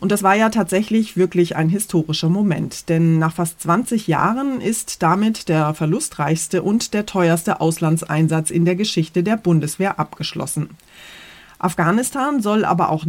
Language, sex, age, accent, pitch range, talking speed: German, female, 30-49, German, 155-195 Hz, 145 wpm